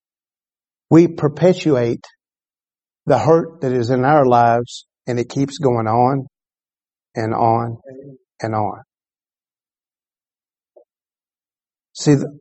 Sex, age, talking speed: male, 50-69, 90 wpm